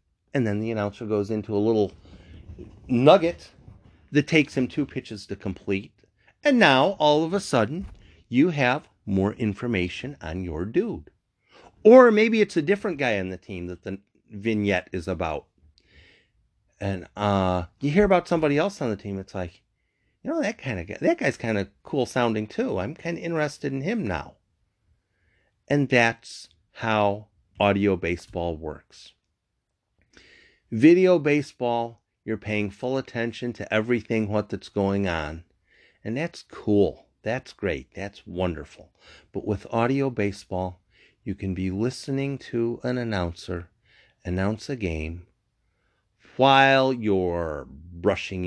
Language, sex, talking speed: English, male, 140 wpm